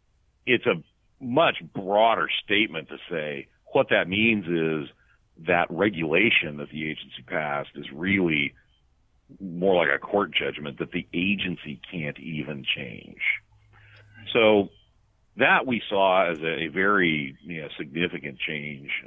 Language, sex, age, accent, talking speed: English, male, 50-69, American, 130 wpm